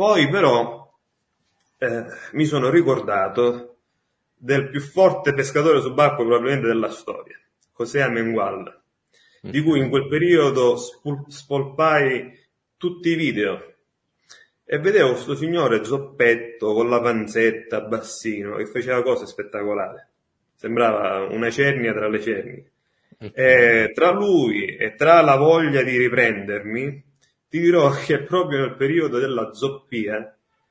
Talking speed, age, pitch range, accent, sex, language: 120 wpm, 30-49, 115-145 Hz, native, male, Italian